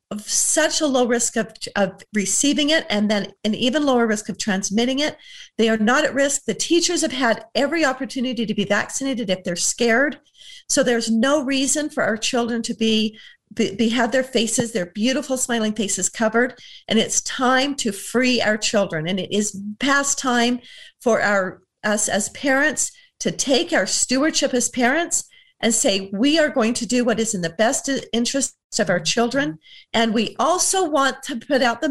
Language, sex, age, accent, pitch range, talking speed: English, female, 50-69, American, 215-275 Hz, 190 wpm